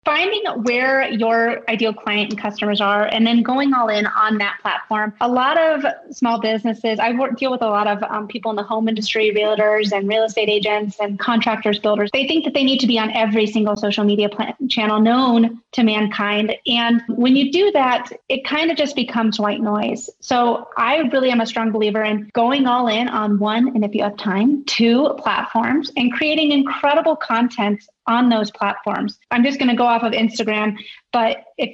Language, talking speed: English, 200 wpm